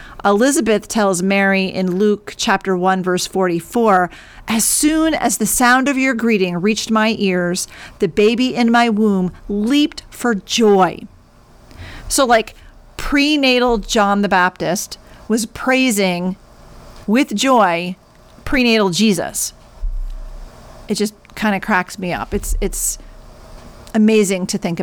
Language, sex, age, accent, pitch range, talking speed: English, female, 40-59, American, 185-220 Hz, 125 wpm